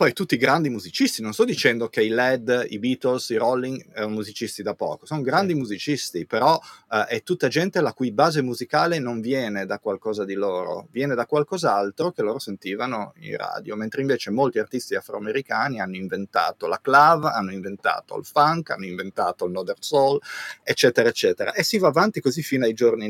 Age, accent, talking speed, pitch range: 30-49, native, 185 wpm, 105-145 Hz